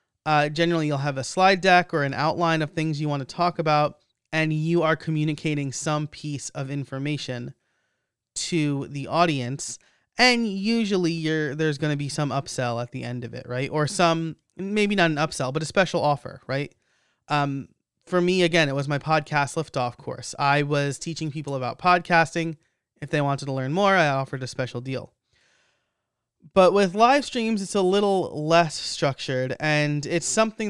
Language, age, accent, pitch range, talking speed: English, 30-49, American, 140-175 Hz, 180 wpm